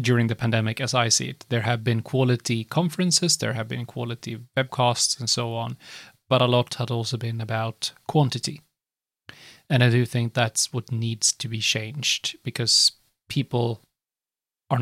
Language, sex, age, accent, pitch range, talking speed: English, male, 30-49, Swedish, 115-140 Hz, 165 wpm